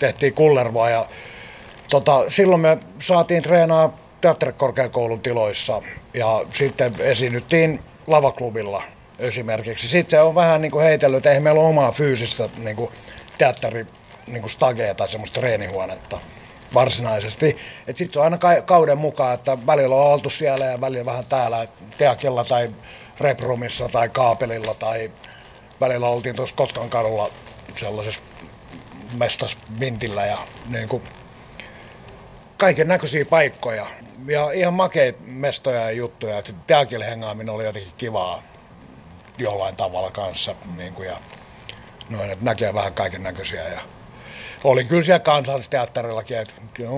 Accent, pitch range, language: native, 115-145 Hz, Finnish